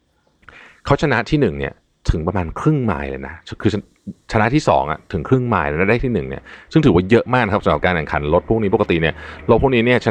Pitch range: 80-115 Hz